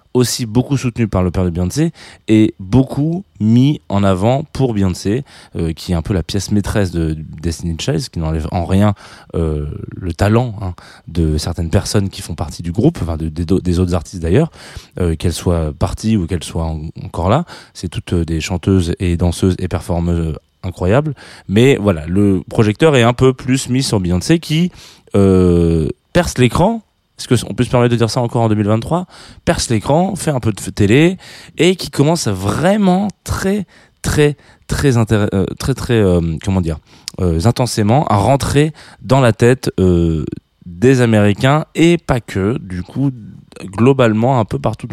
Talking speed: 180 wpm